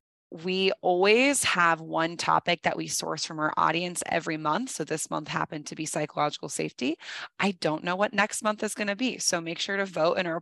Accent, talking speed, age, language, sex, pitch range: American, 215 wpm, 20-39, English, female, 155-180 Hz